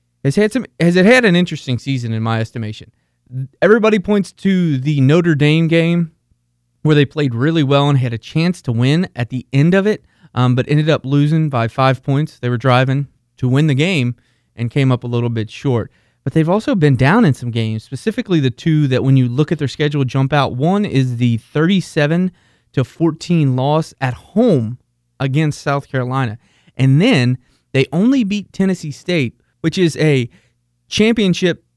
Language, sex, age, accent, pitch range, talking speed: English, male, 20-39, American, 125-160 Hz, 190 wpm